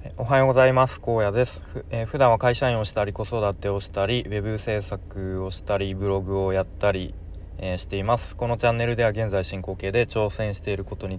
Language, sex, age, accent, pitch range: Japanese, male, 20-39, native, 85-115 Hz